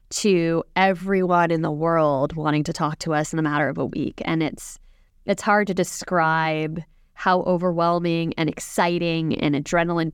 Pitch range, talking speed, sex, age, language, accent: 165-200 Hz, 165 wpm, female, 20-39, English, American